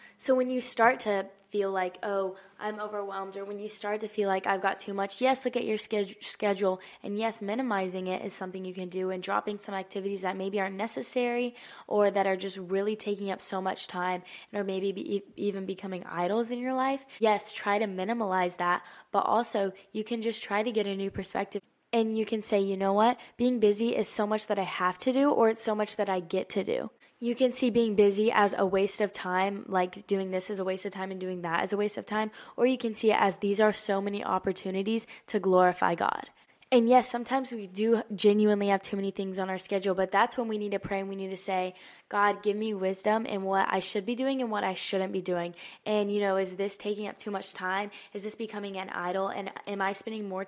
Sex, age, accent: female, 10-29, American